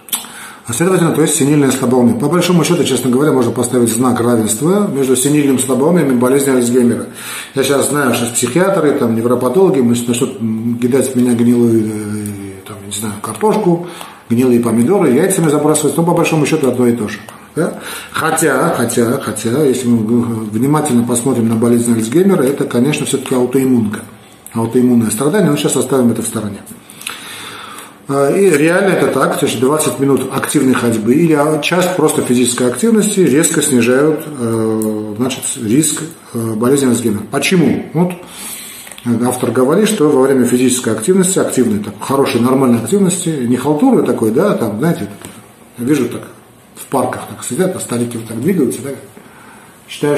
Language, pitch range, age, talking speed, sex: Russian, 120-150 Hz, 40-59, 150 wpm, male